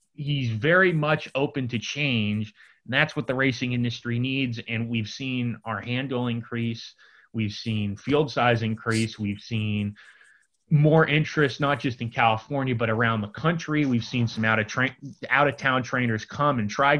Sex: male